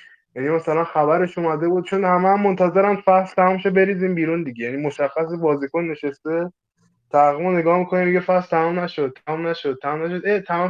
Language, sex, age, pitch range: Persian, male, 20-39, 140-195 Hz